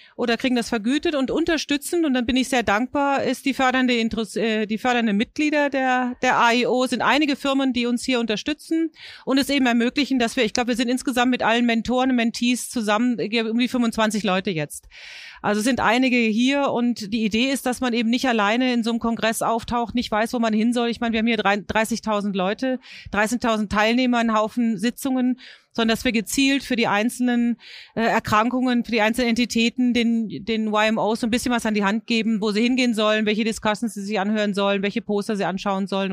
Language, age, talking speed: German, 40-59, 205 wpm